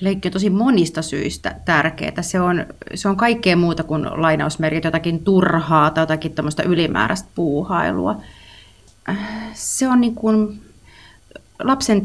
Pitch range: 155-195 Hz